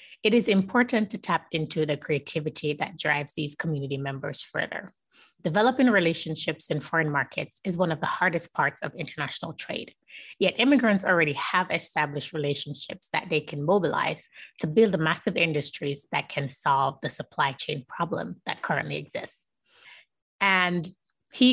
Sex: female